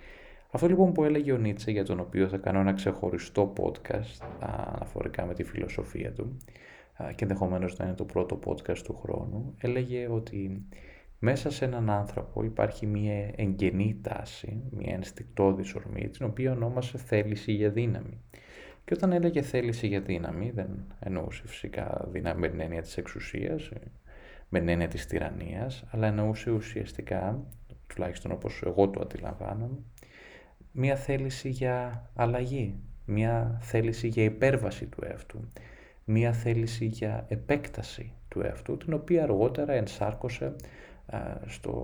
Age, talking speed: 20-39, 135 wpm